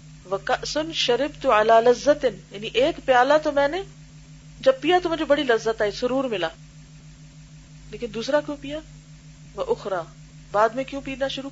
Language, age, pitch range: Urdu, 40-59, 150-250 Hz